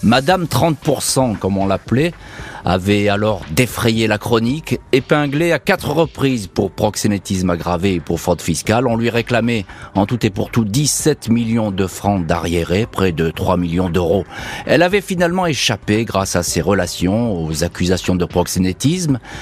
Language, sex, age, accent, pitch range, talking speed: French, male, 40-59, French, 90-125 Hz, 160 wpm